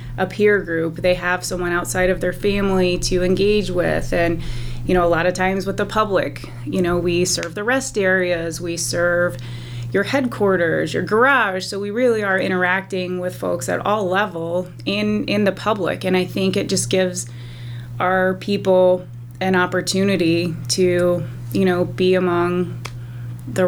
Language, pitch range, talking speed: English, 165-190 Hz, 165 wpm